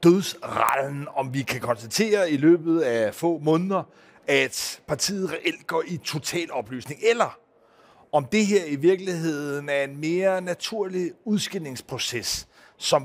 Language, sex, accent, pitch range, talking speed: Danish, male, native, 130-175 Hz, 135 wpm